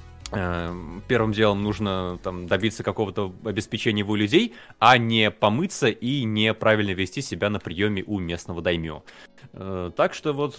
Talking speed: 135 wpm